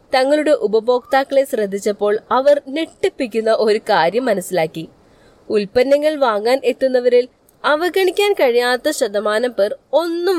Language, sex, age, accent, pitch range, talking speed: Malayalam, female, 20-39, native, 215-310 Hz, 85 wpm